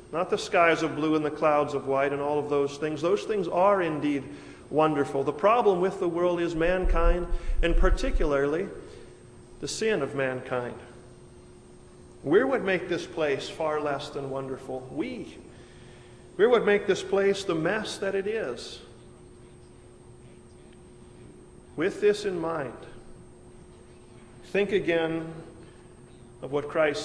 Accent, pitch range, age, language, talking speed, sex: American, 135-190 Hz, 40-59, English, 140 wpm, male